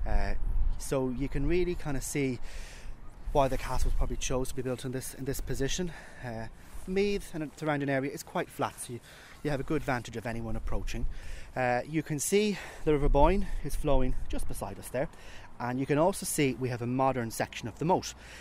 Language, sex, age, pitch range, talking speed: English, male, 30-49, 110-145 Hz, 215 wpm